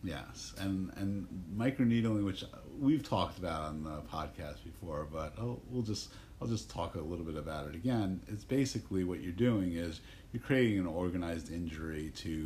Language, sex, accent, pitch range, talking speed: English, male, American, 80-100 Hz, 180 wpm